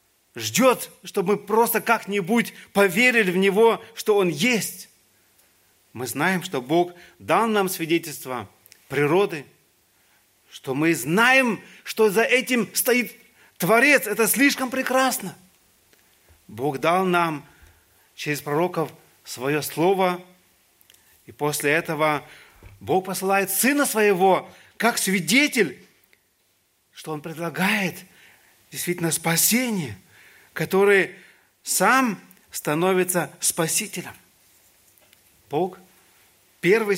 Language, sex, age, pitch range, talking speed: Russian, male, 40-59, 130-205 Hz, 90 wpm